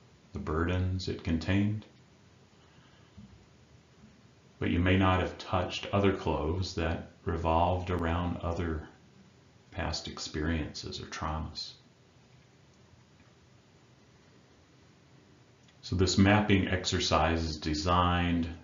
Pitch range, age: 80-105 Hz, 40-59